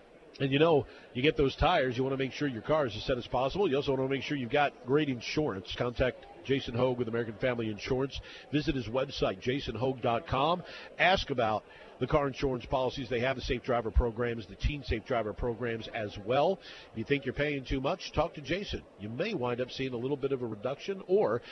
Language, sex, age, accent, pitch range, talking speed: English, male, 50-69, American, 115-140 Hz, 225 wpm